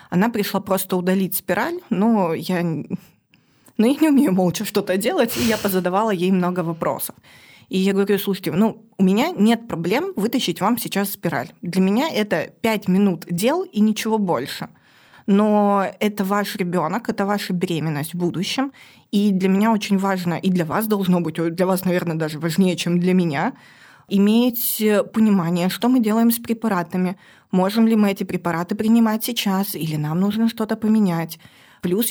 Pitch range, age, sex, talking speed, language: 180-220 Hz, 20-39, female, 165 wpm, Russian